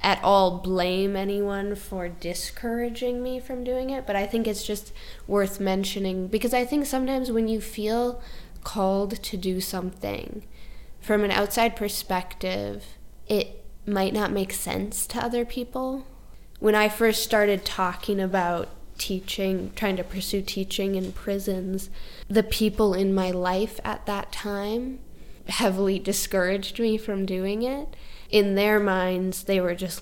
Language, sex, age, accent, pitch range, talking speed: English, female, 10-29, American, 185-220 Hz, 145 wpm